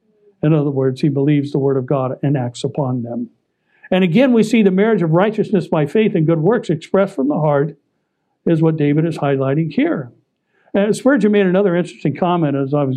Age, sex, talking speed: 60-79, male, 210 wpm